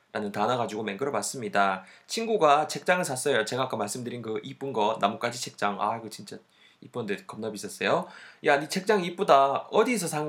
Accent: native